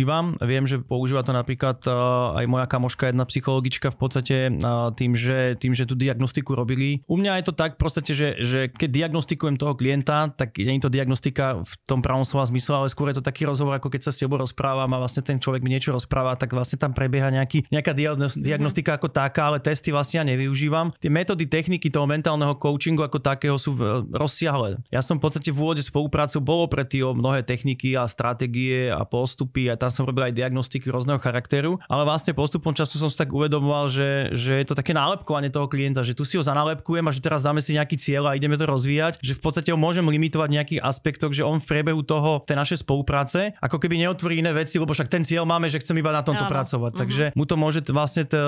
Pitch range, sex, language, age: 130-155 Hz, male, Slovak, 20-39